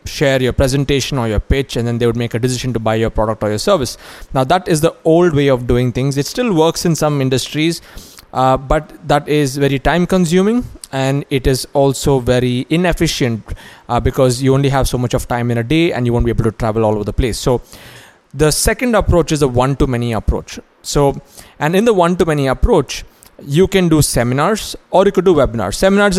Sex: male